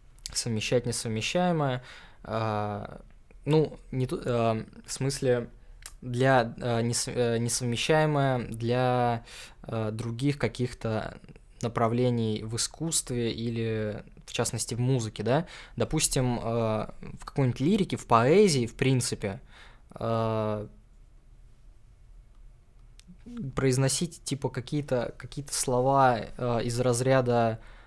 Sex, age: male, 20-39